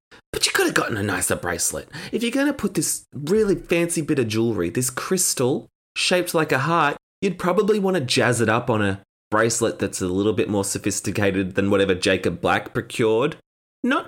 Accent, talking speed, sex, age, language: Australian, 200 wpm, male, 20-39, English